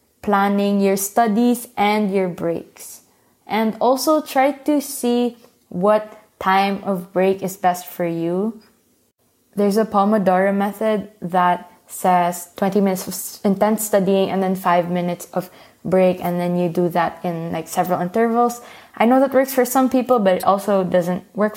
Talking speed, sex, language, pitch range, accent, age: 160 wpm, female, English, 180-215 Hz, Filipino, 20-39